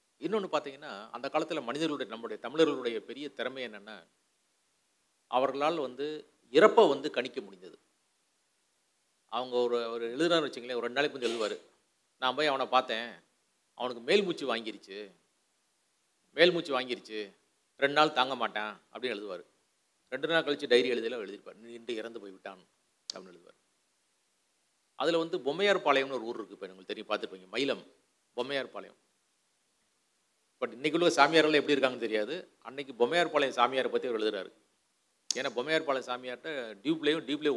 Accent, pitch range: native, 115-155 Hz